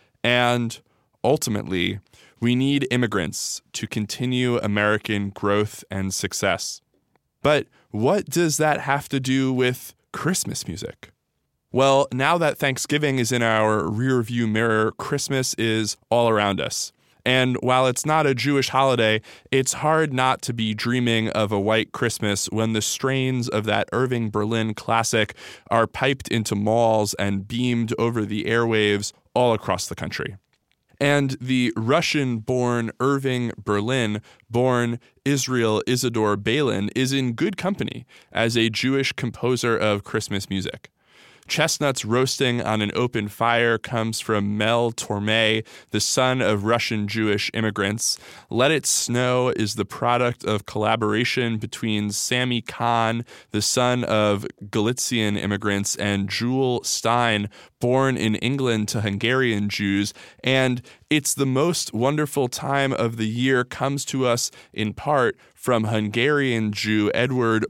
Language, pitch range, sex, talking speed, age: English, 105-130 Hz, male, 135 wpm, 20-39